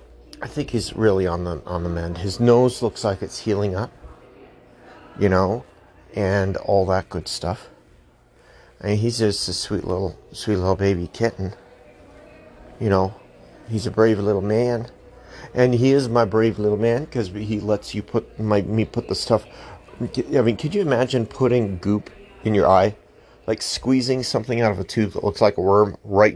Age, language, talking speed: 40-59, English, 180 wpm